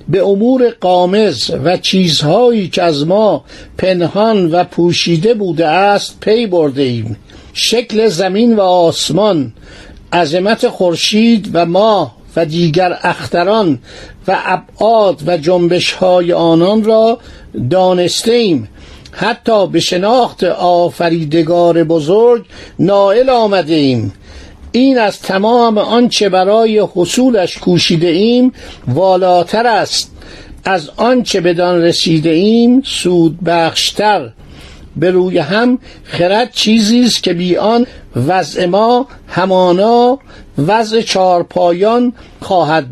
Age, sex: 50-69, male